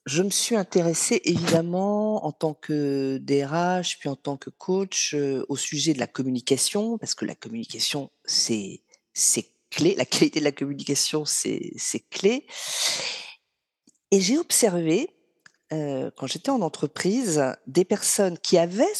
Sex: female